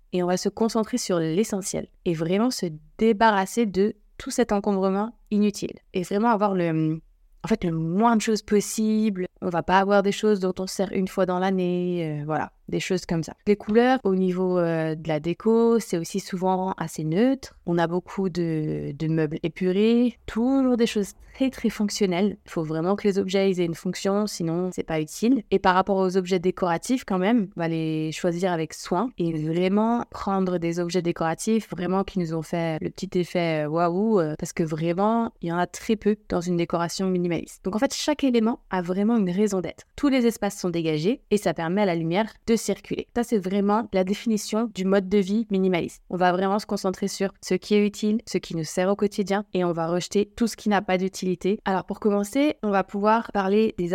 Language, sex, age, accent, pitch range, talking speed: French, female, 20-39, French, 180-215 Hz, 215 wpm